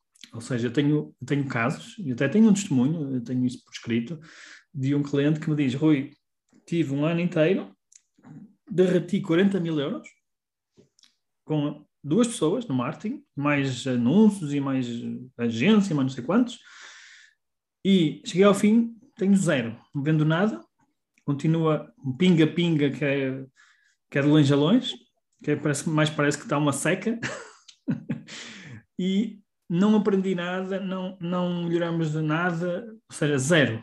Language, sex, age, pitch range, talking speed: Portuguese, male, 20-39, 140-190 Hz, 150 wpm